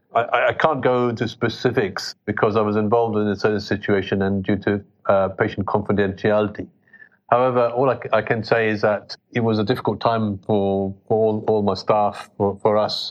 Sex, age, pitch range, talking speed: male, 40-59, 100-115 Hz, 195 wpm